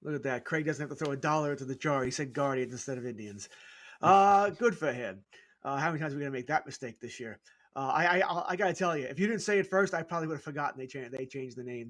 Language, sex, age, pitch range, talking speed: English, male, 30-49, 150-205 Hz, 300 wpm